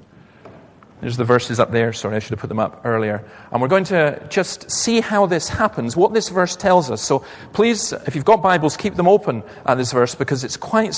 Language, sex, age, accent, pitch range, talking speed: English, male, 40-59, British, 120-180 Hz, 230 wpm